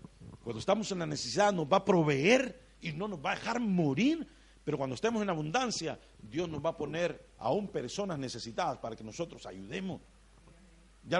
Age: 50-69